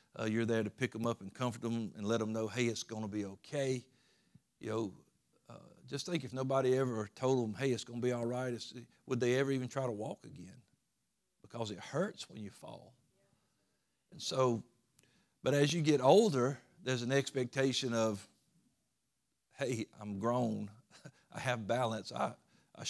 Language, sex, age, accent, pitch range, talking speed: English, male, 50-69, American, 115-135 Hz, 185 wpm